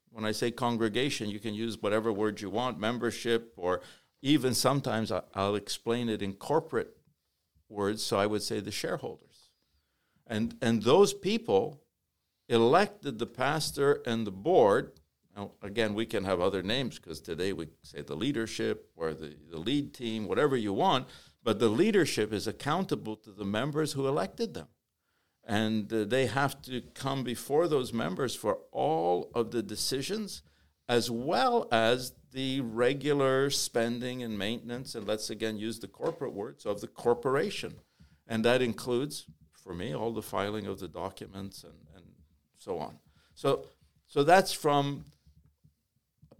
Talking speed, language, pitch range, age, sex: 155 wpm, French, 100-135 Hz, 60-79, male